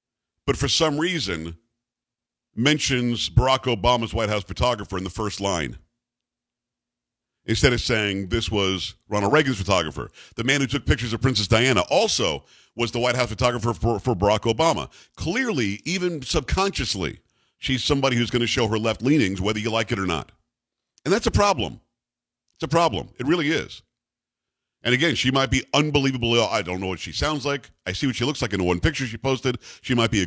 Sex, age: male, 50-69